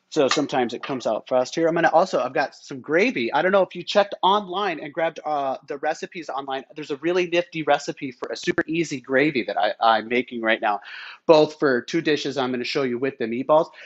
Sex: male